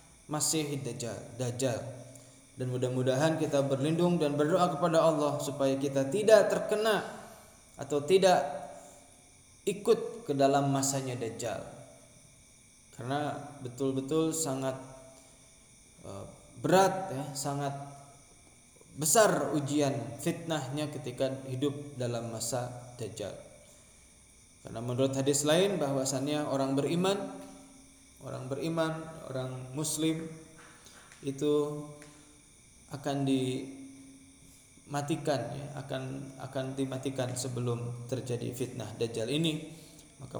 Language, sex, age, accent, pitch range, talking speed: Indonesian, male, 20-39, native, 130-155 Hz, 90 wpm